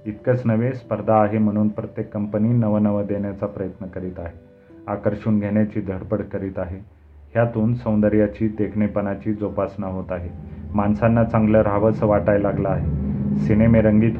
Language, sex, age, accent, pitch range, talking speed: Marathi, male, 30-49, native, 100-110 Hz, 125 wpm